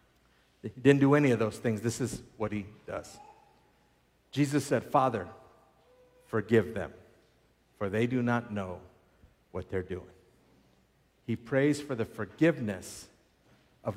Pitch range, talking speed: 120-175 Hz, 135 wpm